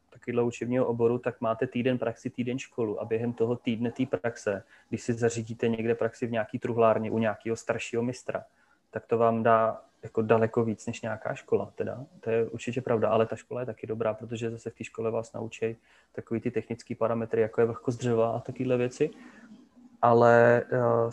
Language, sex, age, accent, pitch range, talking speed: Czech, male, 20-39, native, 115-125 Hz, 190 wpm